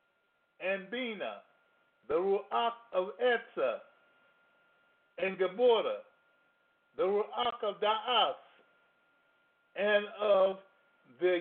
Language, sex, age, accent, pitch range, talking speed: English, male, 50-69, American, 175-255 Hz, 80 wpm